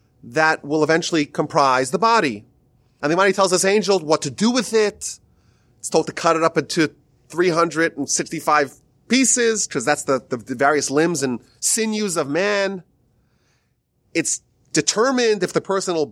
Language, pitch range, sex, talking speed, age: English, 130-195 Hz, male, 160 wpm, 30-49